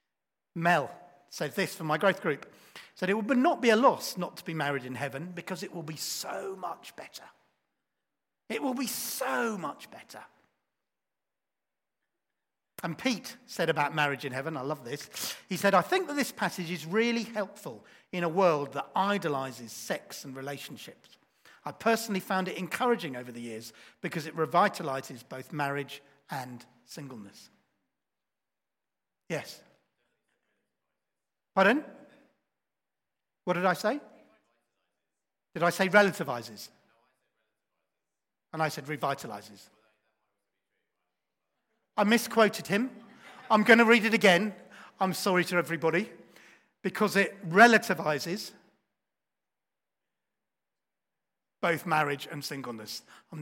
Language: English